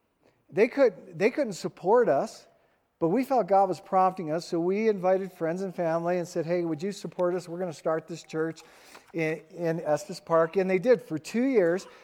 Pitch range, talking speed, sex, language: 155-195 Hz, 205 wpm, male, English